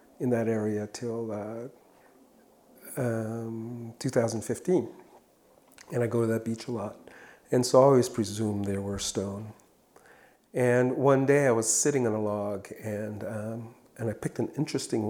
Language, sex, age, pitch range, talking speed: English, male, 50-69, 110-120 Hz, 155 wpm